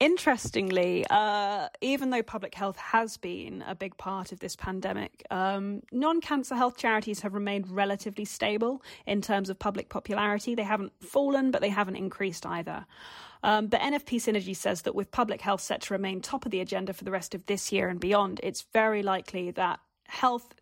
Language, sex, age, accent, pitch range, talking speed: English, female, 20-39, British, 190-225 Hz, 185 wpm